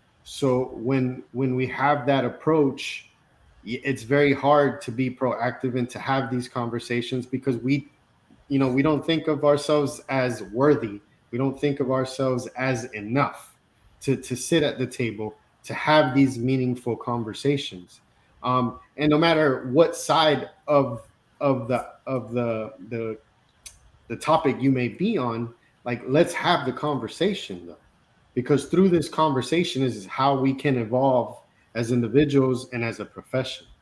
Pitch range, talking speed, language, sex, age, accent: 120-140 Hz, 155 wpm, English, male, 30-49, American